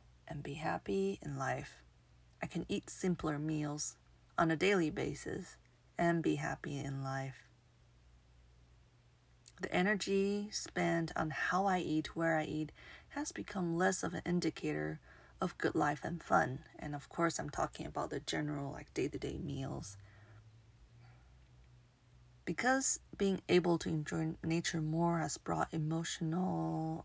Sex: female